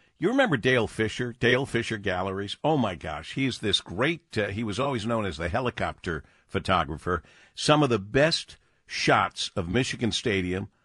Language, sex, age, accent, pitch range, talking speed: English, male, 50-69, American, 95-125 Hz, 165 wpm